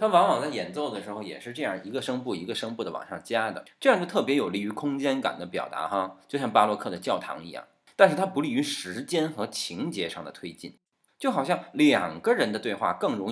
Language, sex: Chinese, male